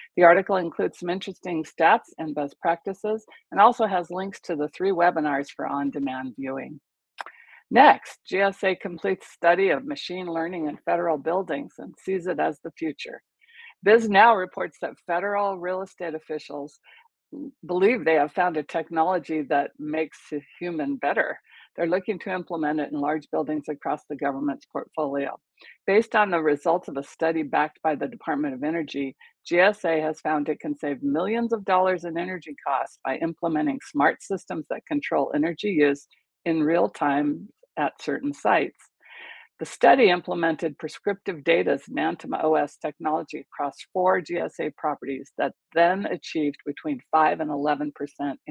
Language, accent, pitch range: English, American, 150-190 Hz